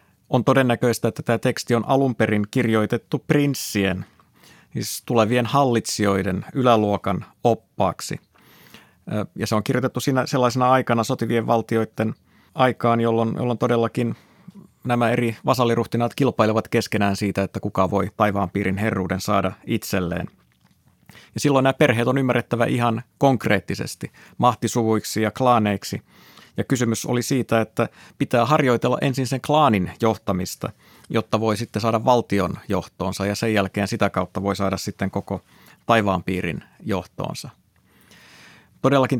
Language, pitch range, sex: Finnish, 105-125 Hz, male